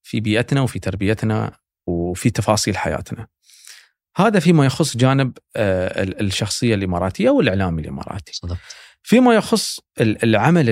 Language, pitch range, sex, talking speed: Arabic, 90-125 Hz, male, 100 wpm